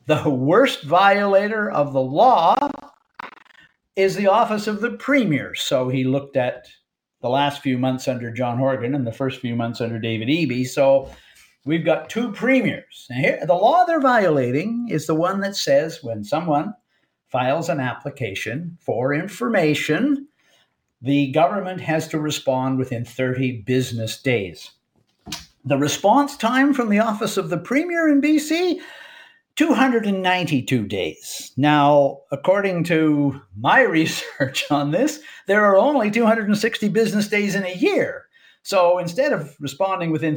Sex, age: male, 50-69